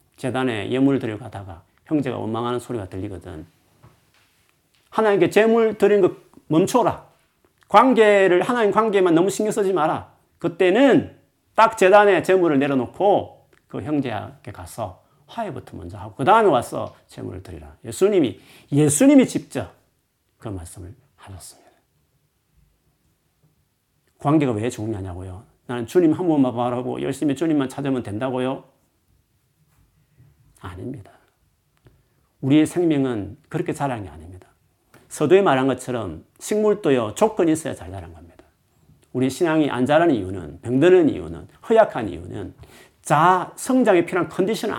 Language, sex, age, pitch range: Korean, male, 40-59, 105-170 Hz